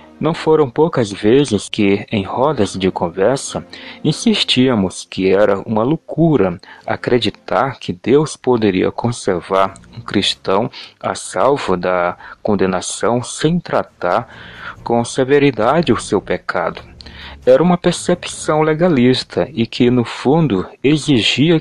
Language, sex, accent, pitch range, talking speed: English, male, Brazilian, 100-145 Hz, 115 wpm